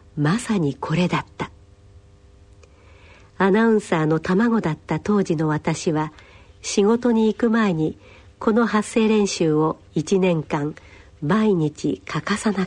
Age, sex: 50-69, female